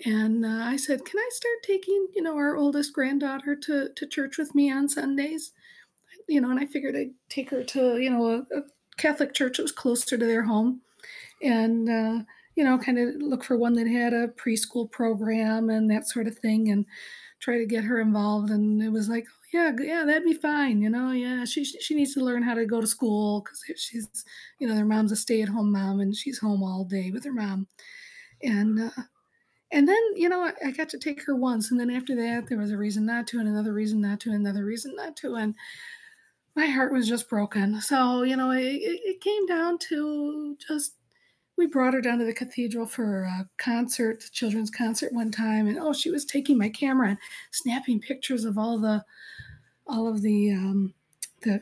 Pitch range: 220-290 Hz